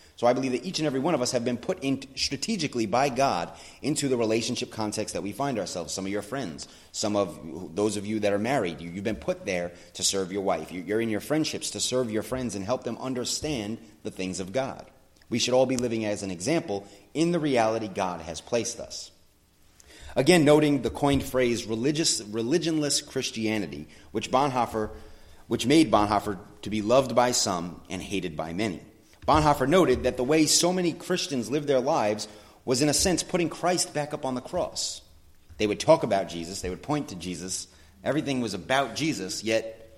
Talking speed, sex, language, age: 205 wpm, male, English, 30-49